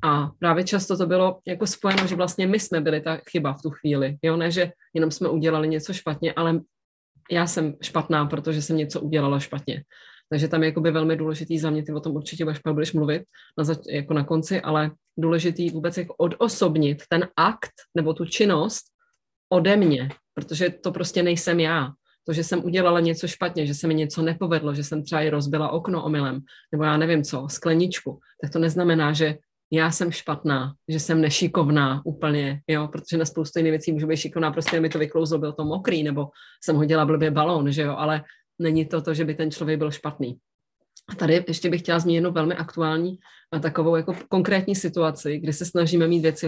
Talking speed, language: 200 wpm, Czech